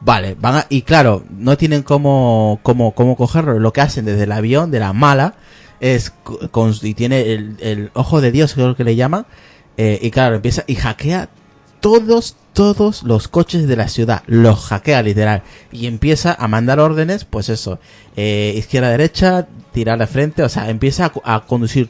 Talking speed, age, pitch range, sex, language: 185 wpm, 30-49, 110-150 Hz, male, Spanish